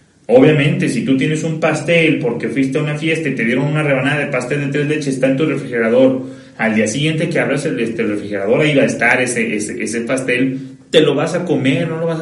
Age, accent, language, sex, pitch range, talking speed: 30-49, Mexican, Spanish, male, 130-165 Hz, 235 wpm